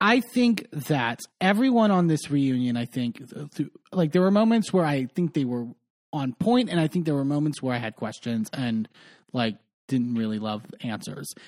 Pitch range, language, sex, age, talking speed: 125-185 Hz, English, male, 30-49, 200 wpm